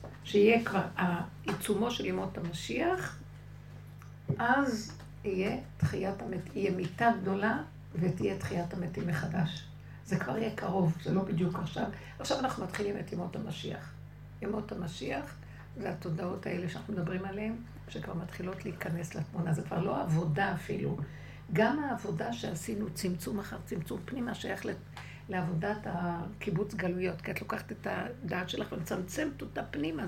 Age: 60-79